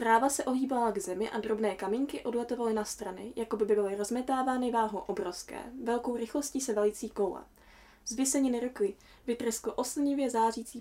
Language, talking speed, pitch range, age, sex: Czech, 150 wpm, 205-245 Hz, 10-29, female